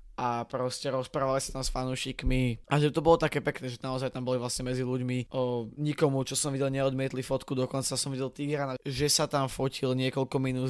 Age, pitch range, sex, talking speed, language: 20-39, 125-145 Hz, male, 210 wpm, Slovak